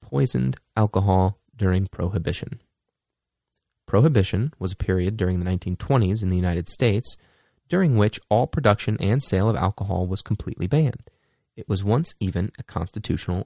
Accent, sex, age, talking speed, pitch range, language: American, male, 30-49, 145 wpm, 90-120 Hz, English